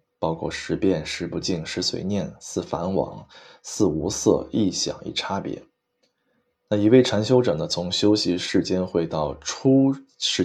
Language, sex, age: Chinese, male, 20-39